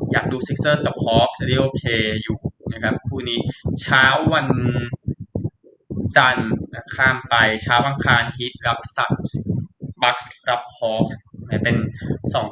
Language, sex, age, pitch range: Thai, male, 20-39, 120-135 Hz